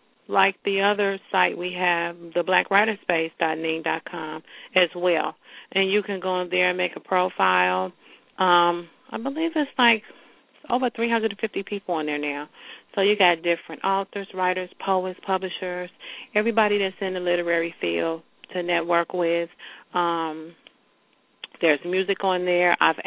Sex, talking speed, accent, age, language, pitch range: female, 140 wpm, American, 40-59, English, 170-195 Hz